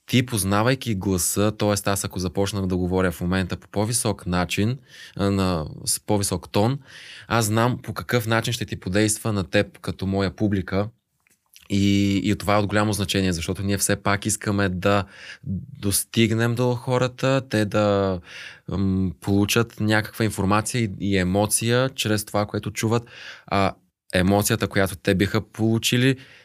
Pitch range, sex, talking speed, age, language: 100-115 Hz, male, 150 wpm, 20-39, Bulgarian